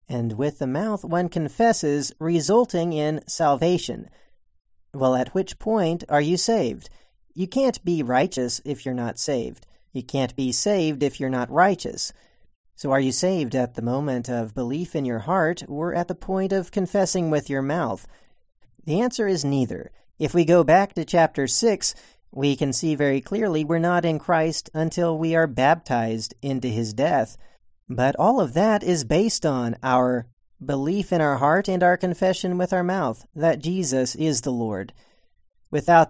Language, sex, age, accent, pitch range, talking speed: English, male, 40-59, American, 125-175 Hz, 175 wpm